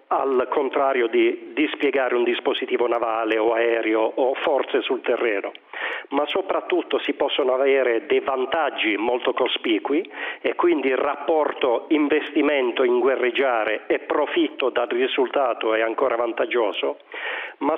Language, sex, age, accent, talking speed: Italian, male, 40-59, native, 125 wpm